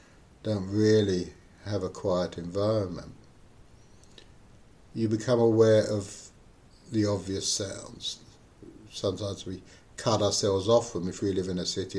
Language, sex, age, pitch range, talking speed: English, male, 60-79, 95-120 Hz, 125 wpm